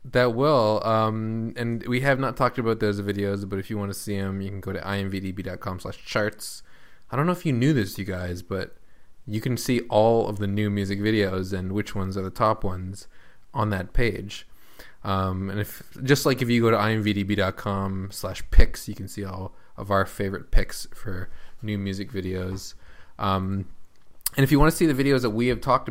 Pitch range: 95-115 Hz